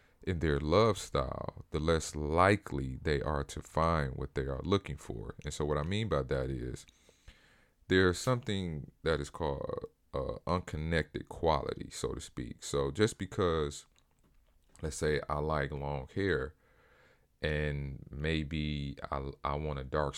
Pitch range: 70-85 Hz